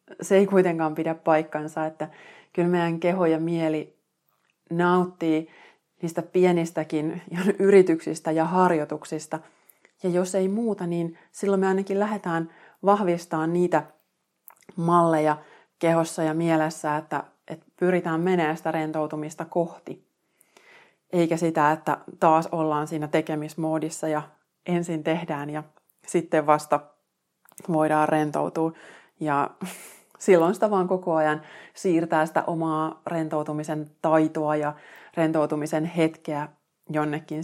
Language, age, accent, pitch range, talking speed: Finnish, 30-49, native, 155-175 Hz, 110 wpm